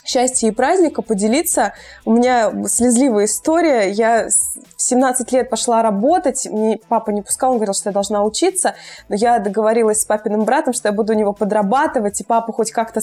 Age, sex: 20-39, female